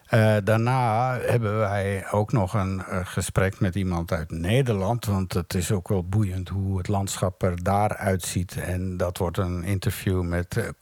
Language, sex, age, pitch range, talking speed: Dutch, male, 60-79, 95-115 Hz, 175 wpm